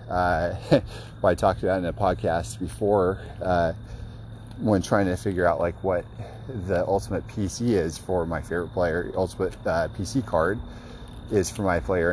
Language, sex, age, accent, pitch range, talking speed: English, male, 30-49, American, 90-110 Hz, 160 wpm